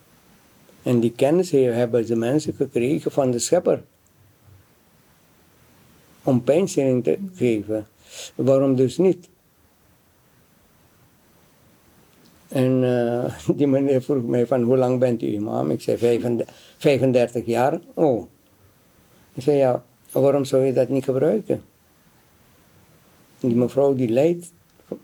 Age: 60-79